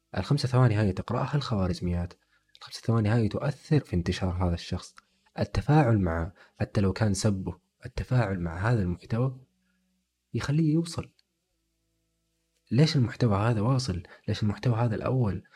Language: Arabic